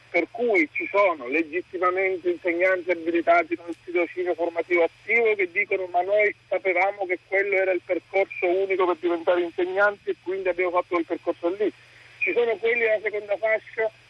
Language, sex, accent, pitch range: Italian, male, native, 180-290 Hz